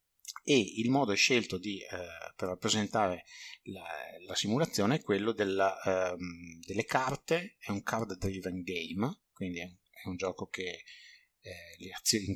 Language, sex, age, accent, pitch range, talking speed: Italian, male, 30-49, native, 95-105 Hz, 155 wpm